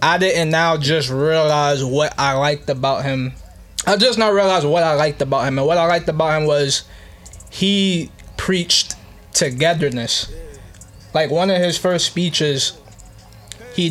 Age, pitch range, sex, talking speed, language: 20-39, 130-160 Hz, male, 155 wpm, English